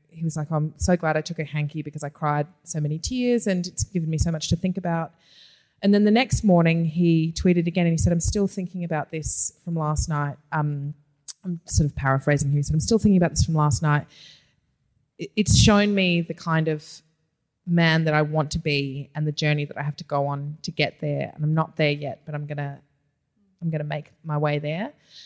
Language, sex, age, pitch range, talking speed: English, female, 20-39, 150-185 Hz, 240 wpm